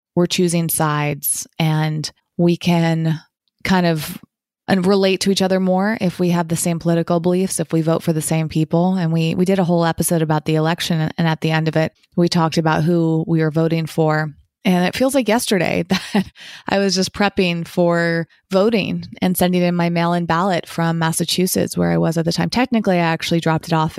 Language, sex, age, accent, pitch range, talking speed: English, female, 20-39, American, 165-185 Hz, 210 wpm